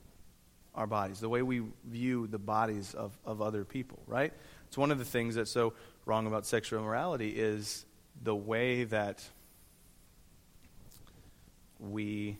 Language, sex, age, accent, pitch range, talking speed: English, male, 30-49, American, 100-115 Hz, 140 wpm